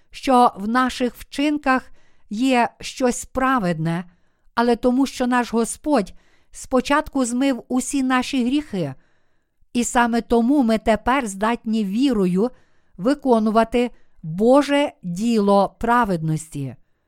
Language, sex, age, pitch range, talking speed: Ukrainian, female, 50-69, 210-260 Hz, 100 wpm